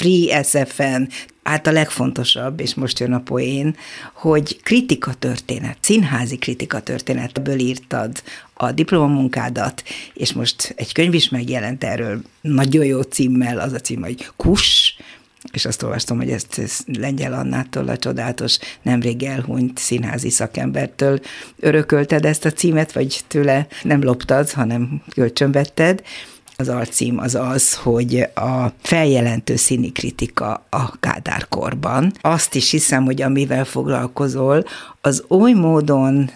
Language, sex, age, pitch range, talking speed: Hungarian, female, 60-79, 125-150 Hz, 125 wpm